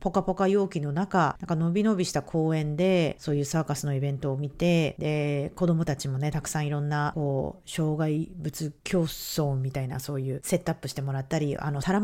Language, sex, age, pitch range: Japanese, female, 40-59, 140-185 Hz